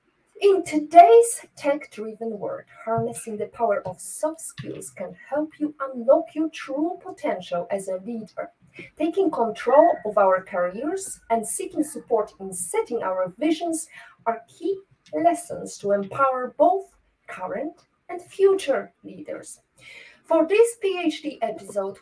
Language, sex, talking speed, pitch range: English, female, 125 wpm, 210-325 Hz